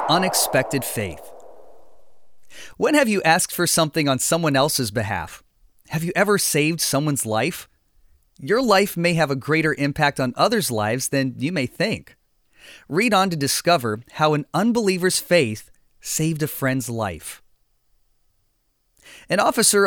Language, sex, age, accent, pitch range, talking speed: English, male, 30-49, American, 130-175 Hz, 140 wpm